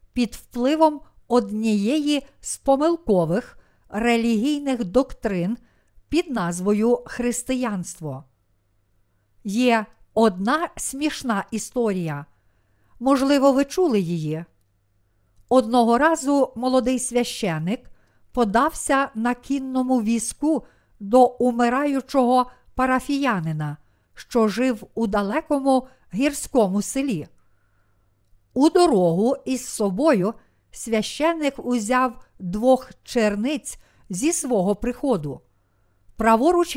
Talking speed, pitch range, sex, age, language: 75 wpm, 195-265 Hz, female, 50-69, Ukrainian